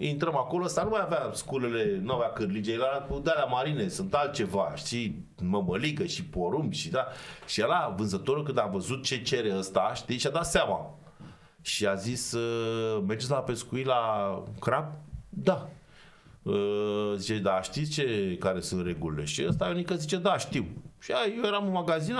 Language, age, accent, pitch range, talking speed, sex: Romanian, 30-49, native, 125-175 Hz, 165 wpm, male